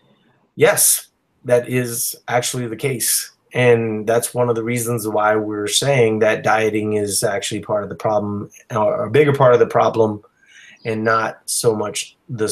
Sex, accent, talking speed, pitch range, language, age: male, American, 170 wpm, 115-160 Hz, English, 30-49